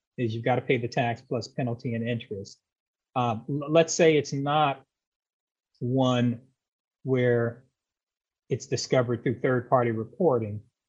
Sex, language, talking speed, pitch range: male, English, 125 wpm, 115-140 Hz